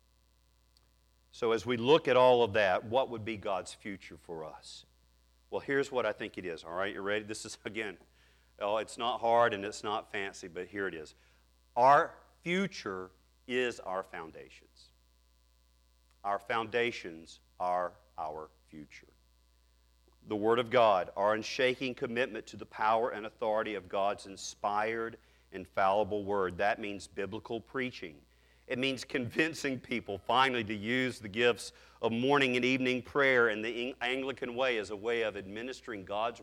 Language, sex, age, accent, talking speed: English, male, 40-59, American, 155 wpm